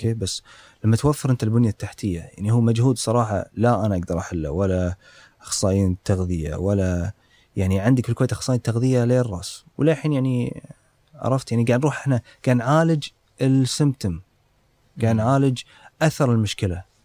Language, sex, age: Arabic, male, 30-49